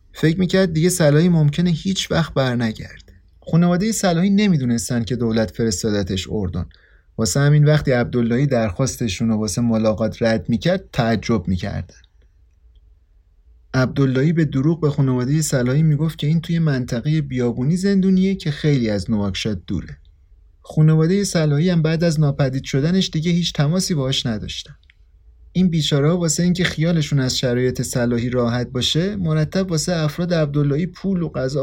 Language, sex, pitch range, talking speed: Persian, male, 110-170 Hz, 140 wpm